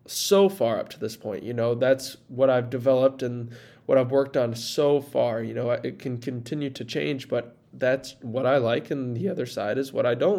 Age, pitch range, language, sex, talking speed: 20-39, 120-140 Hz, English, male, 225 wpm